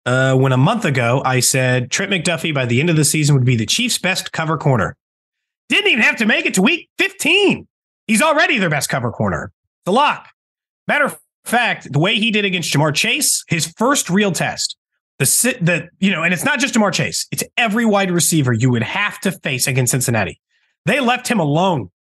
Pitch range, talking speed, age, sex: 150-240 Hz, 215 wpm, 30-49, male